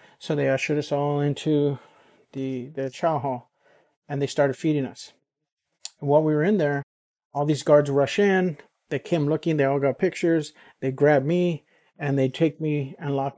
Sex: male